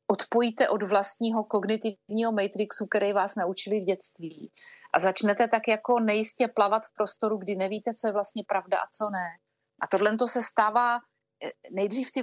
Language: Slovak